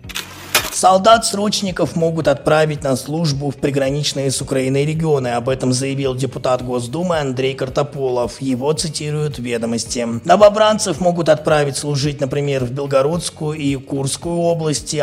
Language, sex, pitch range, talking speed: Russian, male, 130-160 Hz, 125 wpm